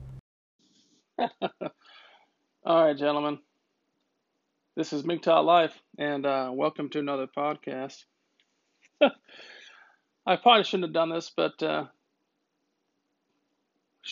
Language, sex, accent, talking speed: English, male, American, 90 wpm